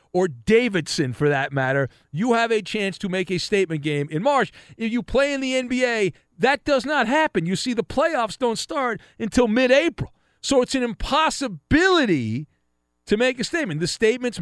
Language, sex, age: English, male, 40-59